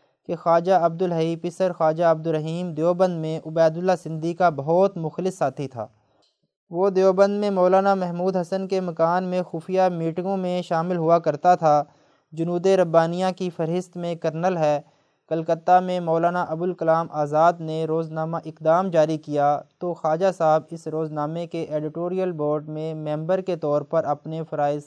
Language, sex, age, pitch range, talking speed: Urdu, male, 20-39, 150-175 Hz, 155 wpm